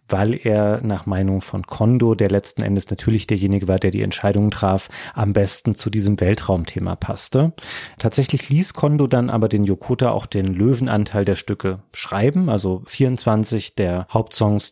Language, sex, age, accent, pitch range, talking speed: German, male, 30-49, German, 100-125 Hz, 160 wpm